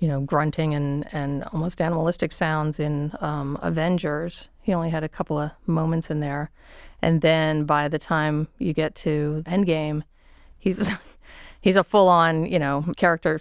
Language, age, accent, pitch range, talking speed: English, 40-59, American, 150-175 Hz, 160 wpm